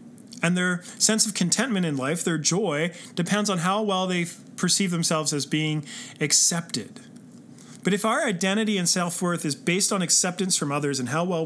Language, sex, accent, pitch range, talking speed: English, male, American, 170-225 Hz, 180 wpm